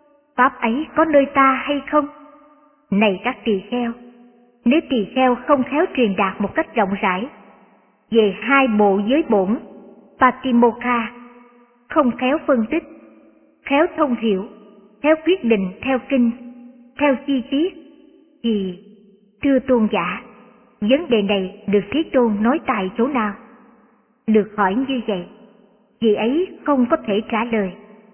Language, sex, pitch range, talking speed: Vietnamese, male, 210-275 Hz, 145 wpm